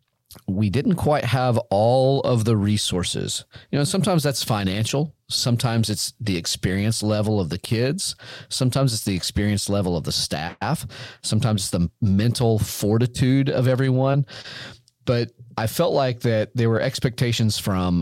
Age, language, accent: 40-59, English, American